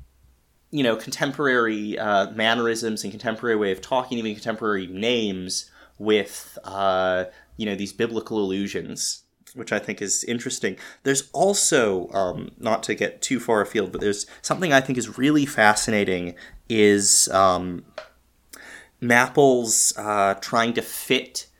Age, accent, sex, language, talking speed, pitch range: 20-39, American, male, English, 135 wpm, 105-150 Hz